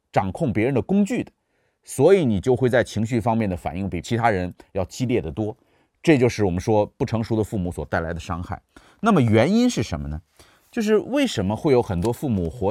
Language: Chinese